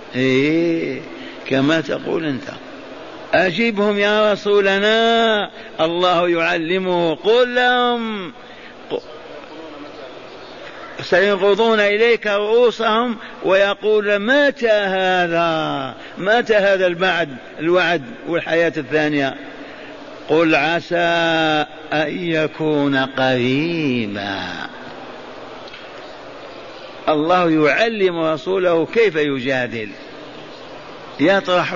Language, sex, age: Arabic, male, 50-69